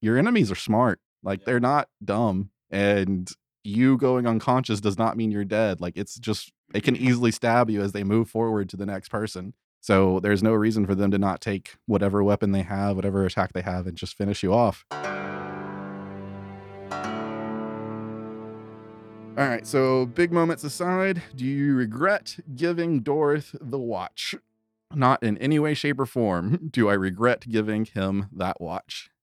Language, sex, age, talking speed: English, male, 20-39, 170 wpm